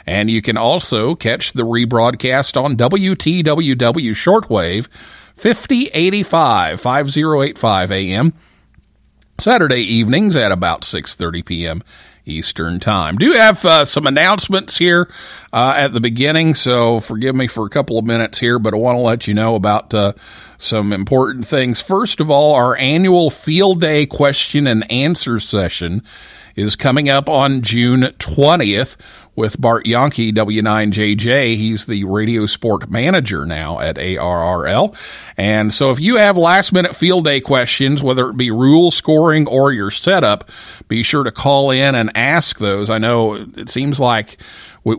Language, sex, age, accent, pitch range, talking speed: English, male, 50-69, American, 105-145 Hz, 150 wpm